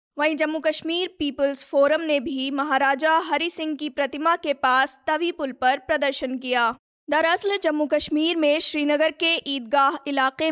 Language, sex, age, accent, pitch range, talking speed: Hindi, female, 20-39, native, 275-315 Hz, 155 wpm